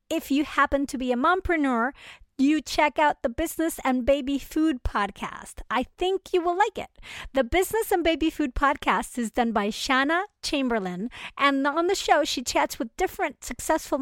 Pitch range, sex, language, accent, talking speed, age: 250-325 Hz, female, English, American, 180 wpm, 50-69